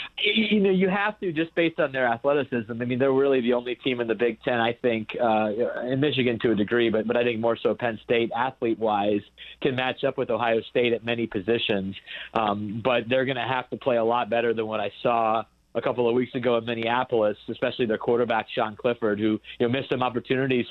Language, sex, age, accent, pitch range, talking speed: English, male, 30-49, American, 115-130 Hz, 230 wpm